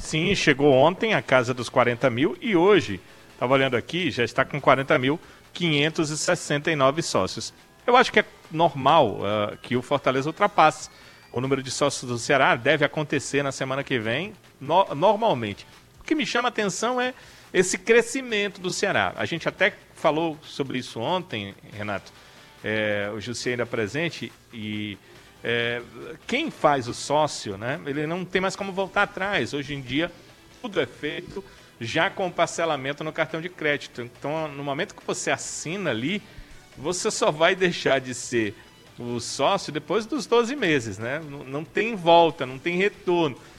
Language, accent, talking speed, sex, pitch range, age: Portuguese, Brazilian, 165 wpm, male, 130-190 Hz, 40-59